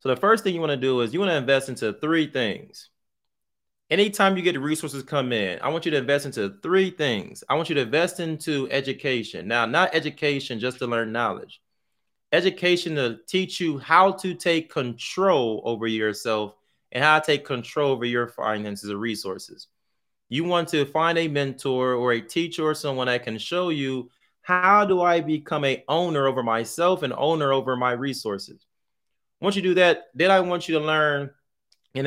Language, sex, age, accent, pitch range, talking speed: English, male, 30-49, American, 125-170 Hz, 195 wpm